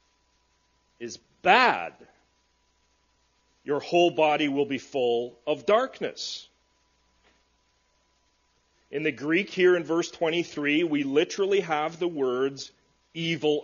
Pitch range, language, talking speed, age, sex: 120-175 Hz, English, 100 wpm, 40-59, male